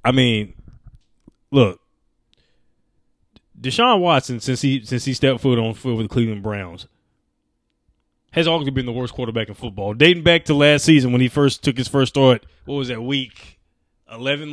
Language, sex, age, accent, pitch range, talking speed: English, male, 20-39, American, 115-145 Hz, 175 wpm